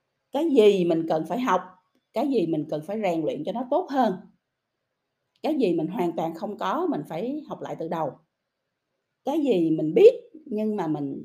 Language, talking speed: Vietnamese, 195 wpm